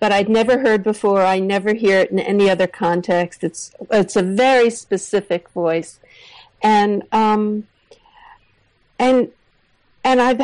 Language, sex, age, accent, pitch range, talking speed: English, female, 50-69, American, 205-265 Hz, 140 wpm